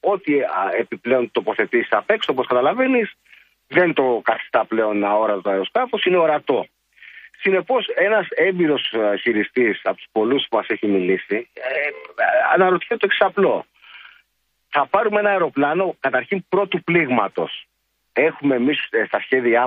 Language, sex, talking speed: Greek, male, 120 wpm